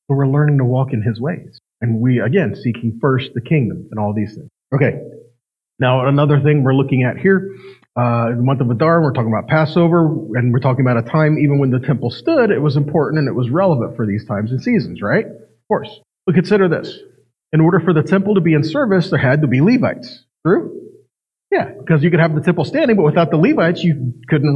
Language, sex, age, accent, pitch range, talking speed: English, male, 40-59, American, 125-165 Hz, 230 wpm